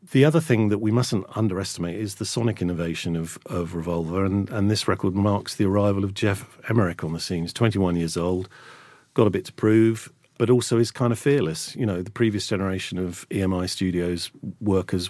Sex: male